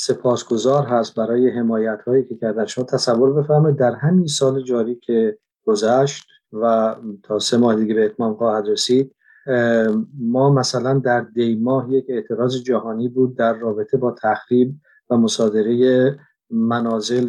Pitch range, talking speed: 115-130 Hz, 140 wpm